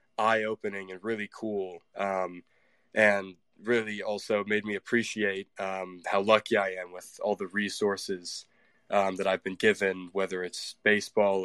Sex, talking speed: male, 145 wpm